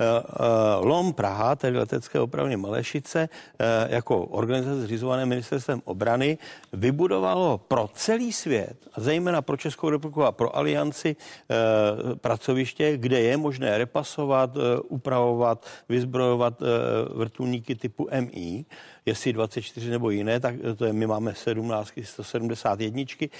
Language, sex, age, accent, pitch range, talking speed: Czech, male, 50-69, native, 115-160 Hz, 110 wpm